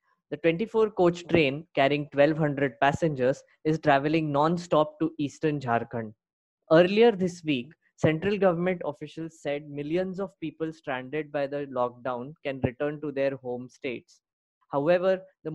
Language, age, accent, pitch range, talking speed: English, 20-39, Indian, 140-175 Hz, 130 wpm